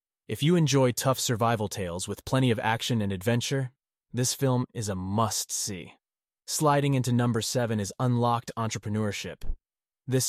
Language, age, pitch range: English, 30-49, 100-120 Hz